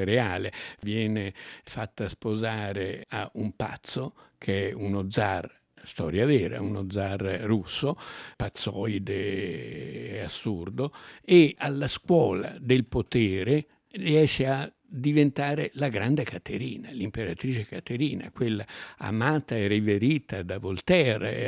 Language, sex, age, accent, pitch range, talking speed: Italian, male, 60-79, native, 100-140 Hz, 105 wpm